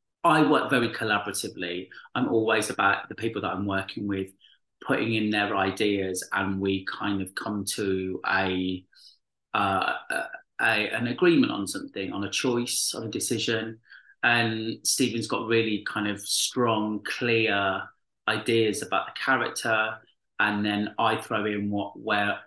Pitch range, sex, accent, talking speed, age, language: 100-125 Hz, male, British, 150 wpm, 30-49, English